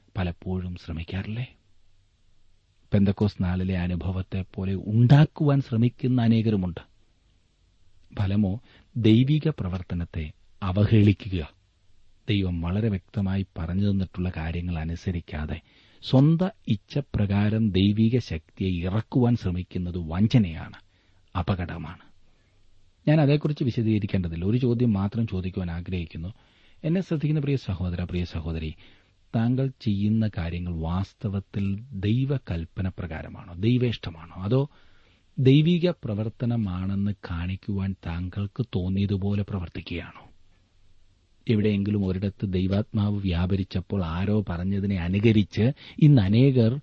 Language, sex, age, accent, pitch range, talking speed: Malayalam, male, 40-59, native, 90-115 Hz, 85 wpm